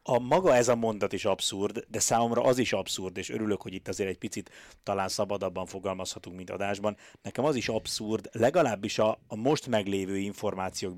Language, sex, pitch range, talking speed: Hungarian, male, 100-120 Hz, 185 wpm